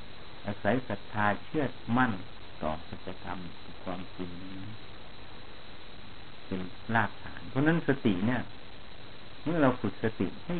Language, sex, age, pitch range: Thai, male, 60-79, 95-120 Hz